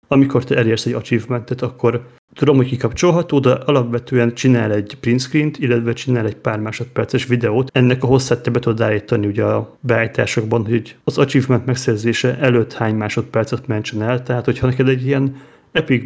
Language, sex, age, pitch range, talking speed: Hungarian, male, 30-49, 110-130 Hz, 170 wpm